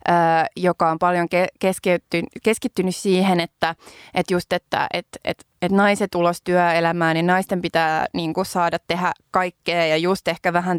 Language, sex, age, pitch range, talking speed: Finnish, female, 20-39, 165-190 Hz, 165 wpm